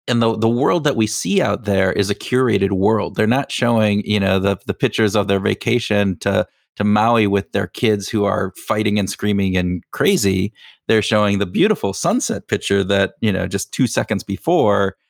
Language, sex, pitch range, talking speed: English, male, 100-115 Hz, 200 wpm